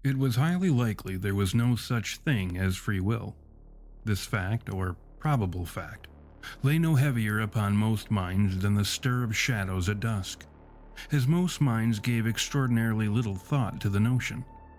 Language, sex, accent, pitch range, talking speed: English, male, American, 100-135 Hz, 160 wpm